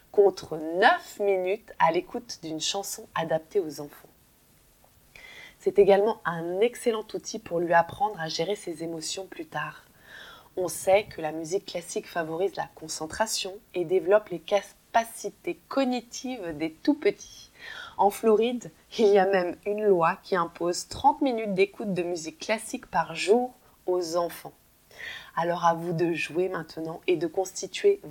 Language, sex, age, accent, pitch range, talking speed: French, female, 20-39, French, 165-210 Hz, 145 wpm